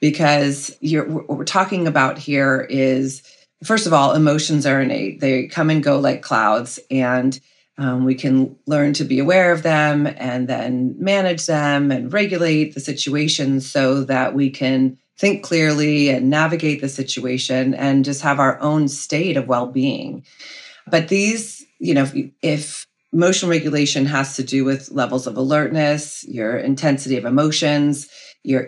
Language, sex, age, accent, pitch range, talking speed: English, female, 30-49, American, 130-155 Hz, 160 wpm